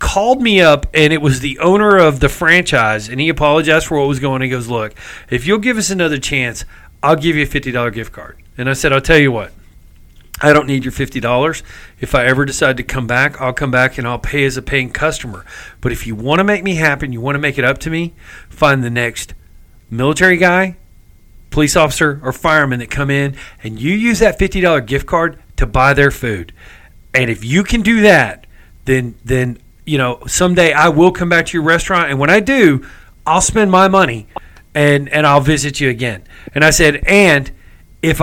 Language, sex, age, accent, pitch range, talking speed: English, male, 40-59, American, 125-165 Hz, 220 wpm